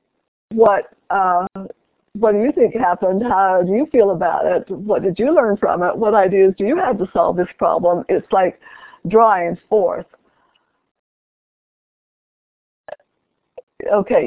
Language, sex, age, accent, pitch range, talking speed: English, female, 60-79, American, 195-250 Hz, 140 wpm